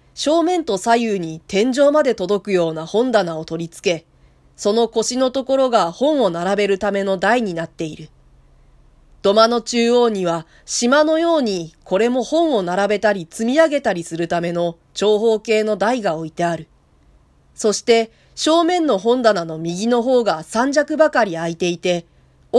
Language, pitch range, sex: Japanese, 175-260 Hz, female